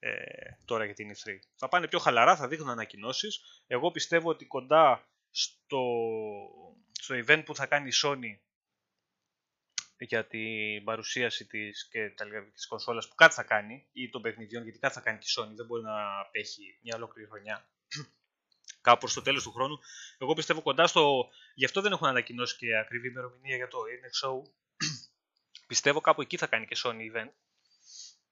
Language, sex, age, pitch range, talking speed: Greek, male, 20-39, 115-150 Hz, 170 wpm